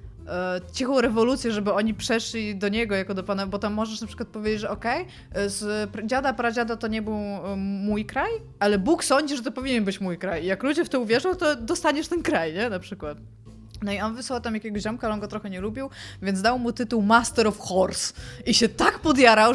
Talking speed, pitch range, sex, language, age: 220 wpm, 195-235 Hz, female, Polish, 20-39